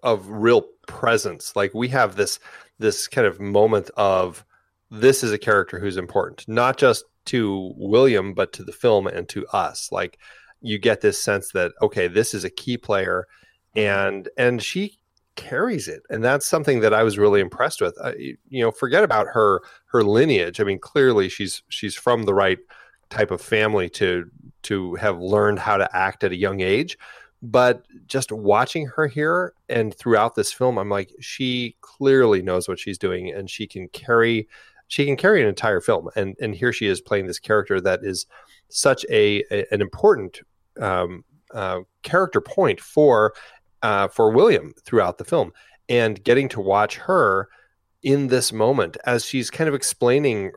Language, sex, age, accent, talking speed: English, male, 30-49, American, 180 wpm